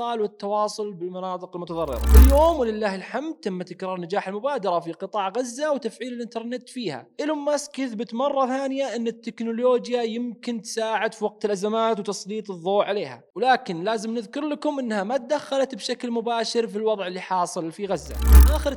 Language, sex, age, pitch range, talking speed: Arabic, male, 20-39, 215-260 Hz, 150 wpm